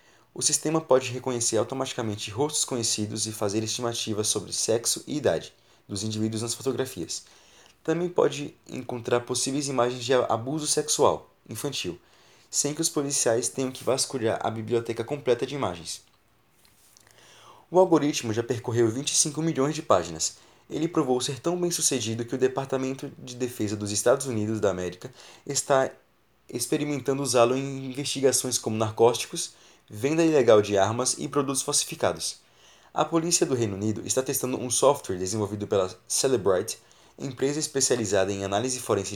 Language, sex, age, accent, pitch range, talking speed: Portuguese, male, 20-39, Brazilian, 110-140 Hz, 145 wpm